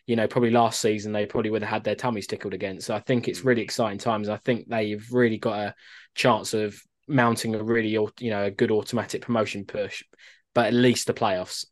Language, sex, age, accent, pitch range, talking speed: English, male, 20-39, British, 100-115 Hz, 225 wpm